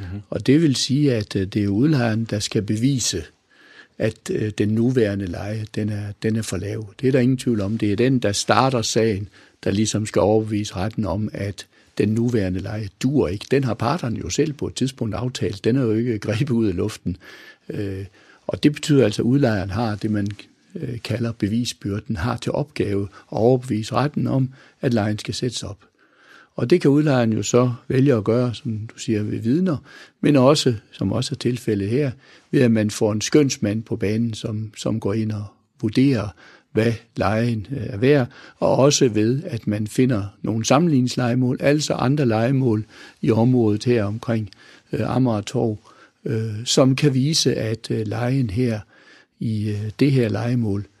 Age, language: 60-79, Danish